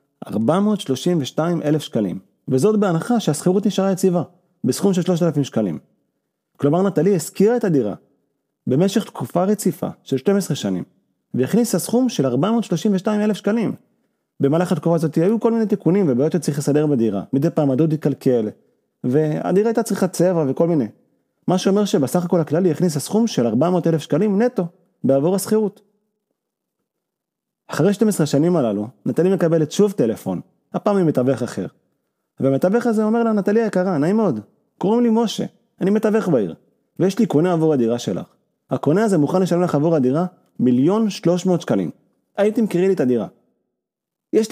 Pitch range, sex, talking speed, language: 150-210 Hz, male, 150 wpm, Hebrew